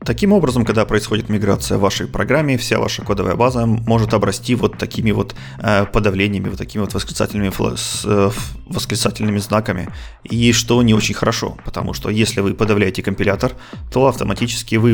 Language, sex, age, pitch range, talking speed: Russian, male, 30-49, 100-115 Hz, 155 wpm